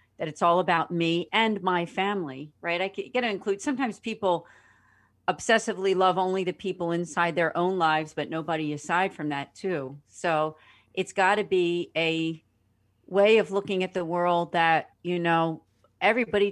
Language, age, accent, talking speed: English, 40-59, American, 165 wpm